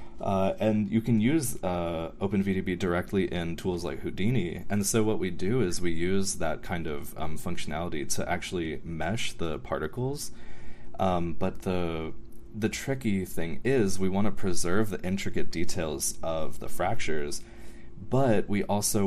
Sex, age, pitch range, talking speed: male, 20-39, 85-105 Hz, 155 wpm